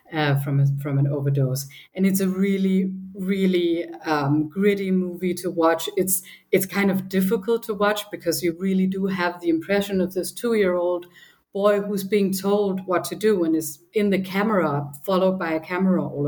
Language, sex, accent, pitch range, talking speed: English, female, German, 155-190 Hz, 190 wpm